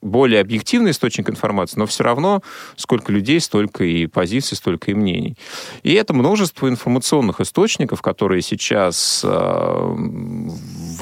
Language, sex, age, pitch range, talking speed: Russian, male, 30-49, 90-135 Hz, 125 wpm